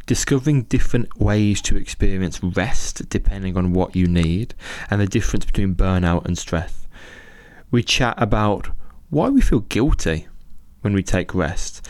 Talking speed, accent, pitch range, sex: 145 wpm, British, 90-110 Hz, male